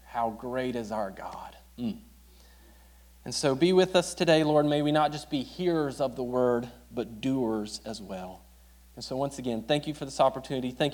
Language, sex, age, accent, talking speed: English, male, 40-59, American, 195 wpm